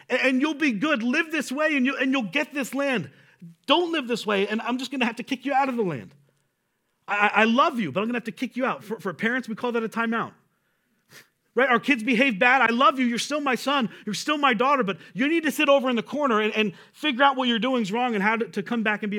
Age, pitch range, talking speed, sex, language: 40-59, 205-270 Hz, 295 wpm, male, English